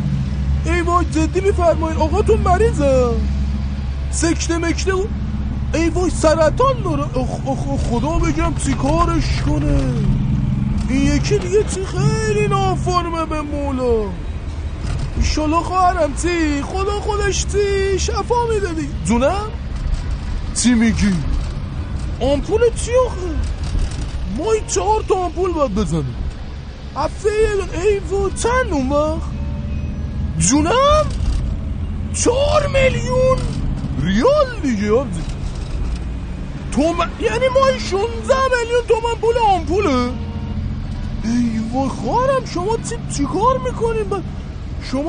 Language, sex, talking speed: Persian, male, 95 wpm